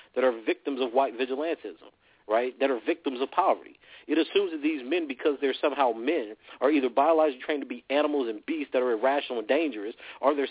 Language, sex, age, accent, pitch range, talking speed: English, male, 40-59, American, 135-195 Hz, 210 wpm